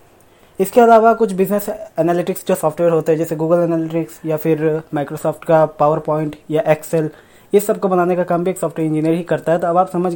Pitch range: 160-190 Hz